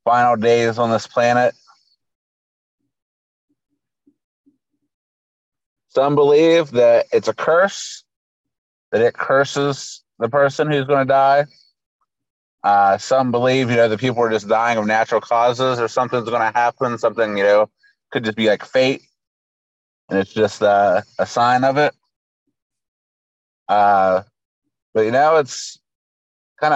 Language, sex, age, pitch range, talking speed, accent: English, male, 30-49, 110-145 Hz, 135 wpm, American